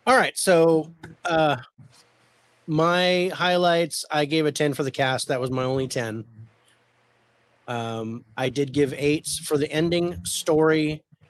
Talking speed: 145 wpm